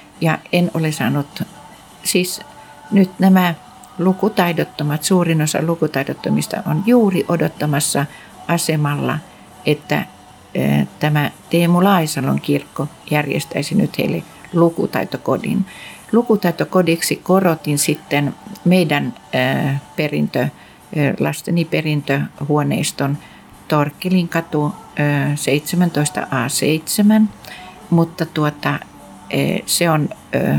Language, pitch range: Finnish, 145-180 Hz